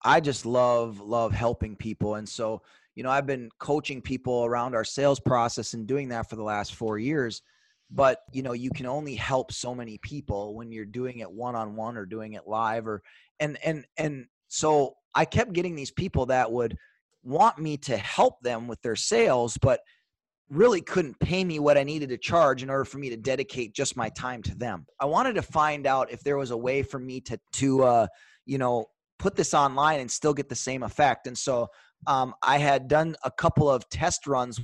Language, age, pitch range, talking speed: English, 30-49, 115-145 Hz, 215 wpm